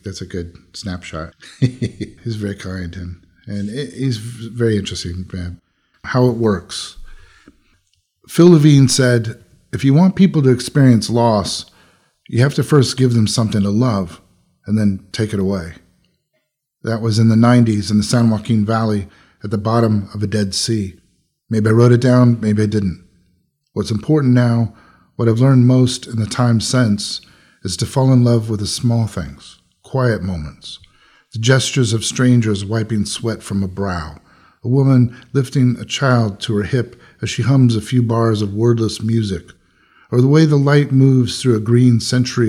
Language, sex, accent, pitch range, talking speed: English, male, American, 100-125 Hz, 175 wpm